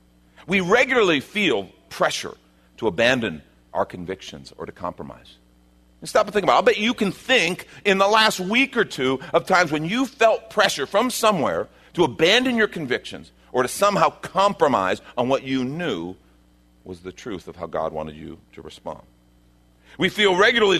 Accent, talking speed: American, 175 wpm